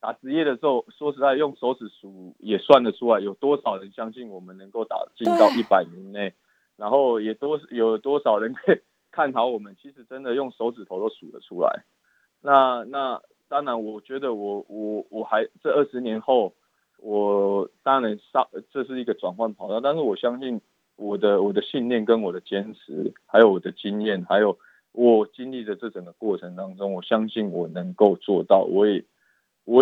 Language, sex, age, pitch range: Chinese, male, 20-39, 100-130 Hz